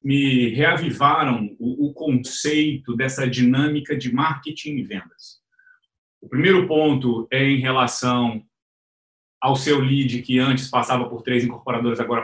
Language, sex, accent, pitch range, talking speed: Portuguese, male, Brazilian, 125-210 Hz, 130 wpm